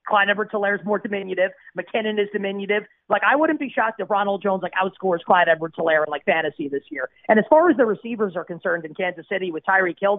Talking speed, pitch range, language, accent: 230 wpm, 185-220 Hz, English, American